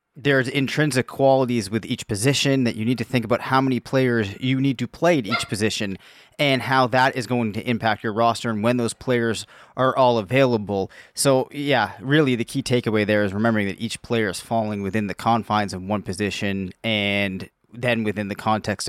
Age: 30-49